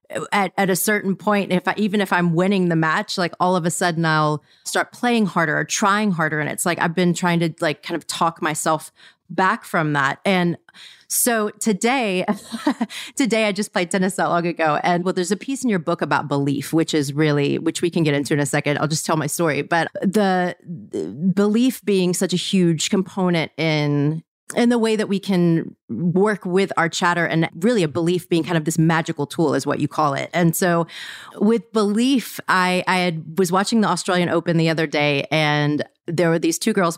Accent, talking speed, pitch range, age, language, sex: American, 215 wpm, 165-205 Hz, 30-49, English, female